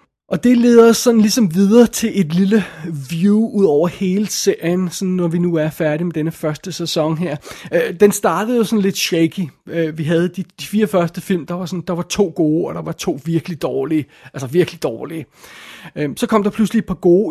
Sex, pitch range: male, 165-195 Hz